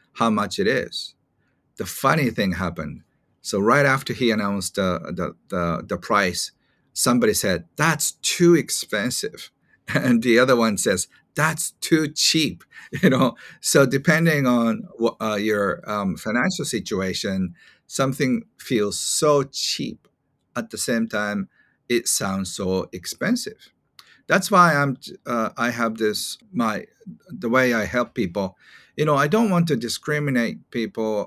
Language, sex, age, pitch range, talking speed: English, male, 50-69, 110-155 Hz, 140 wpm